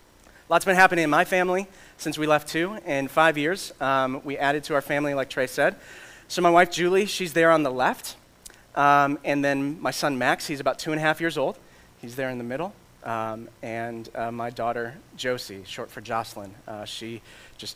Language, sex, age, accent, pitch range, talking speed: English, male, 30-49, American, 115-160 Hz, 210 wpm